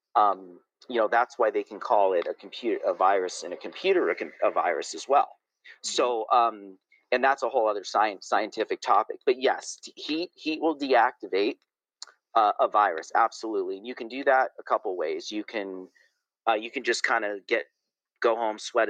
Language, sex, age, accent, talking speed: English, male, 40-59, American, 195 wpm